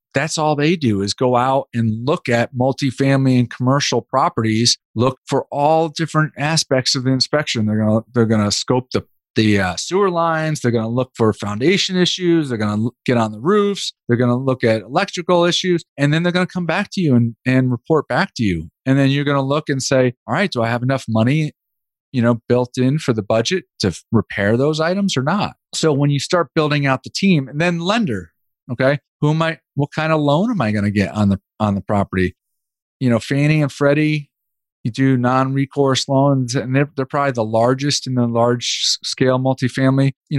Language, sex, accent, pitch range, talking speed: English, male, American, 120-150 Hz, 220 wpm